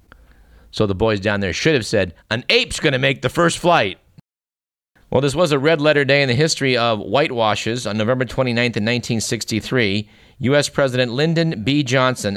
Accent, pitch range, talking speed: American, 105-135 Hz, 175 wpm